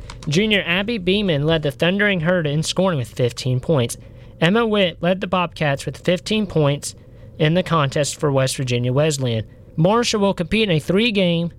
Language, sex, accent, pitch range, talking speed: English, male, American, 140-205 Hz, 170 wpm